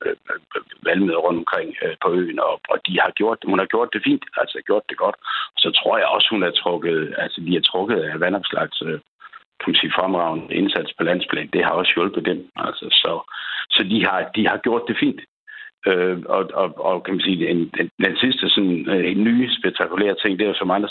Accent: native